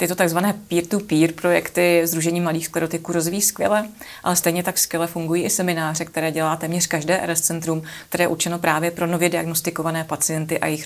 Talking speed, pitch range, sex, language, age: 175 wpm, 165-180 Hz, female, Czech, 30-49